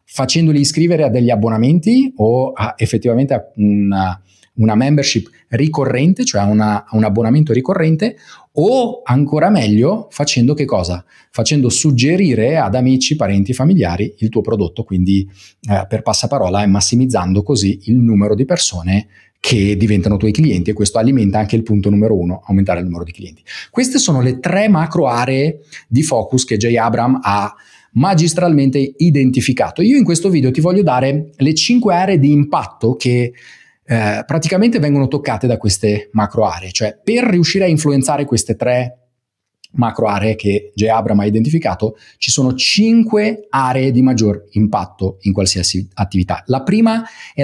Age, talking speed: 30-49, 150 wpm